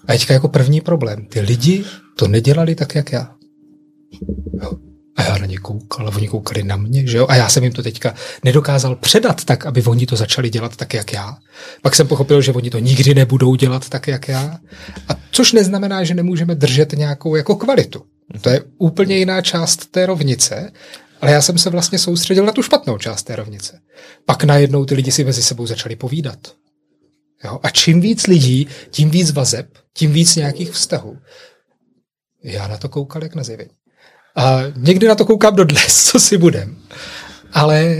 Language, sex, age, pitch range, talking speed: Czech, male, 30-49, 130-170 Hz, 185 wpm